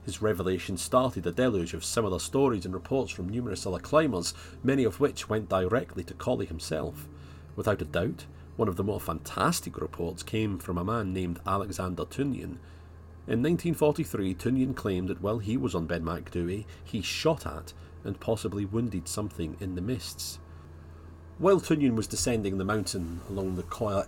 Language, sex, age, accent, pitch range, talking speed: English, male, 40-59, British, 85-105 Hz, 170 wpm